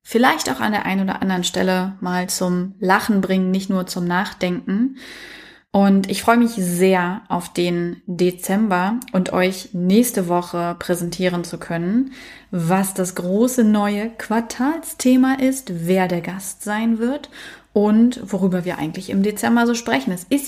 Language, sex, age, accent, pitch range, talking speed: German, female, 20-39, German, 185-225 Hz, 150 wpm